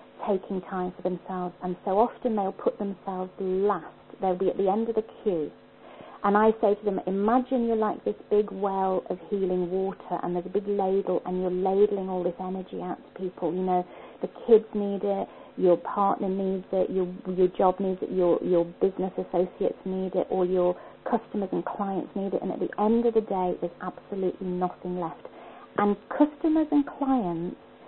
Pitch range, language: 180-210 Hz, English